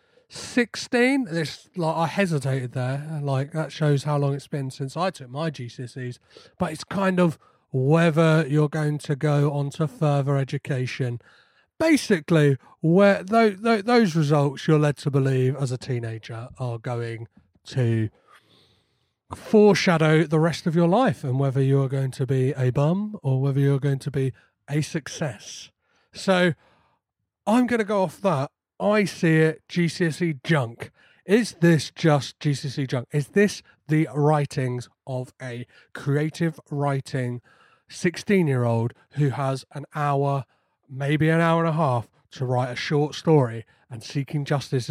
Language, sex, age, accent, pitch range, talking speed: English, male, 30-49, British, 130-170 Hz, 155 wpm